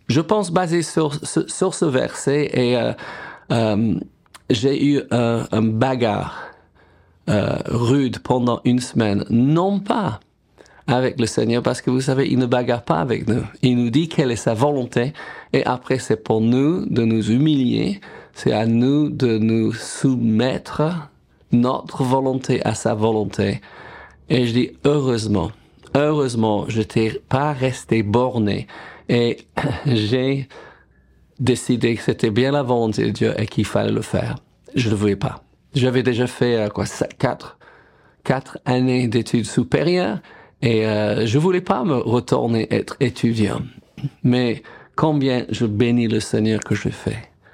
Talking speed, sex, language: 155 wpm, male, French